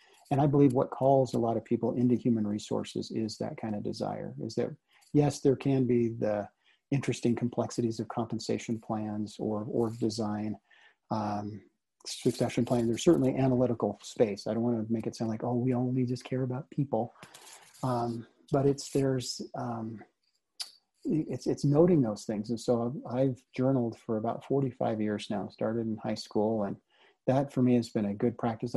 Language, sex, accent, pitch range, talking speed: English, male, American, 110-130 Hz, 180 wpm